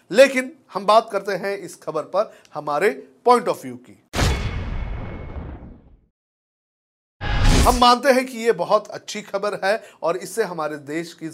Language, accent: Hindi, native